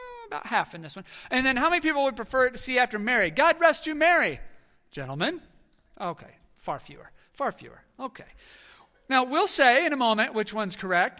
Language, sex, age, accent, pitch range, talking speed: English, male, 40-59, American, 170-250 Hz, 195 wpm